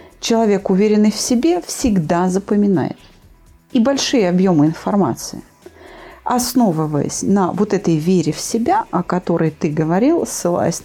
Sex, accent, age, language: female, native, 40-59, Russian